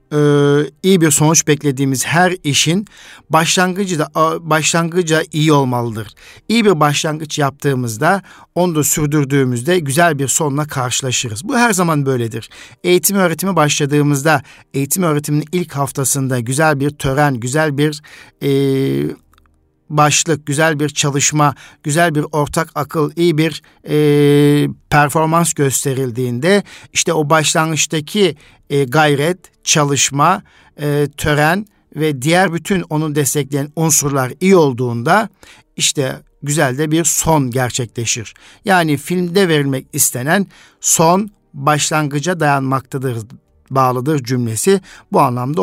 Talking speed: 110 wpm